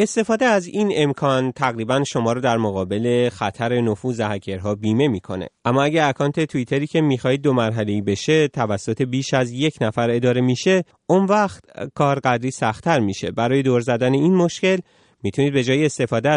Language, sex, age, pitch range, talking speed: Persian, male, 30-49, 105-145 Hz, 165 wpm